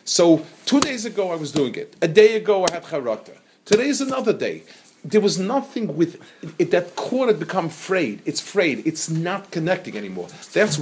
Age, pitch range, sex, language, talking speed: 40-59, 135-205 Hz, male, English, 200 wpm